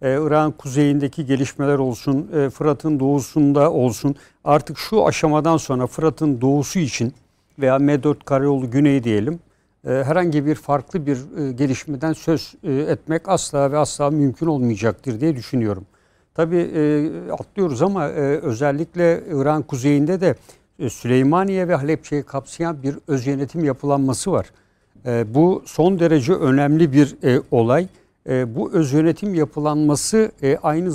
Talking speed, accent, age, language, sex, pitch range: 135 wpm, native, 60-79, Turkish, male, 130-160 Hz